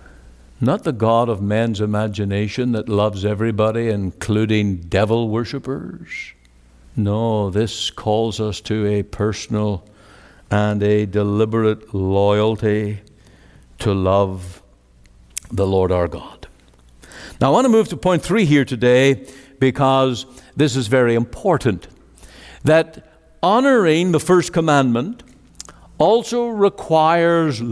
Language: English